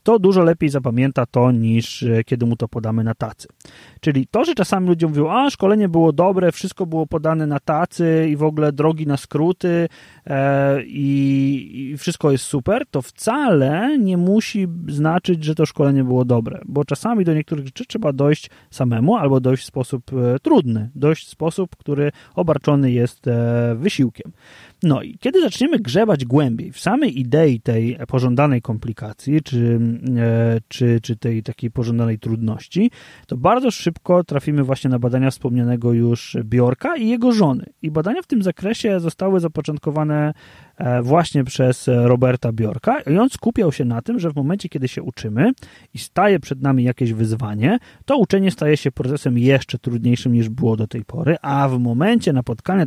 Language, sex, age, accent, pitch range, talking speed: Polish, male, 30-49, native, 125-170 Hz, 165 wpm